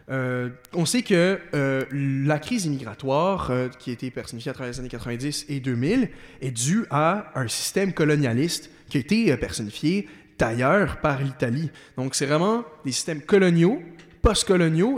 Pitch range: 130-165 Hz